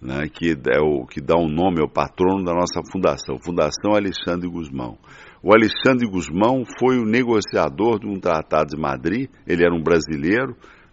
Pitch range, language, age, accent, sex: 80-100 Hz, Chinese, 60-79, Brazilian, male